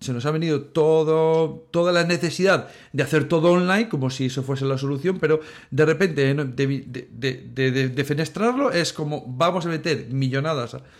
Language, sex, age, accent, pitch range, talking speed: Spanish, male, 40-59, Spanish, 135-160 Hz, 165 wpm